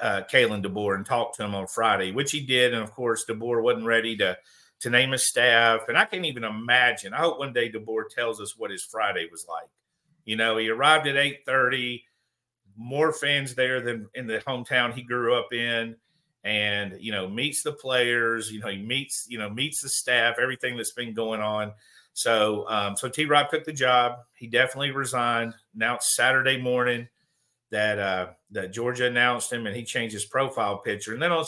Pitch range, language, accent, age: 110-135 Hz, English, American, 50-69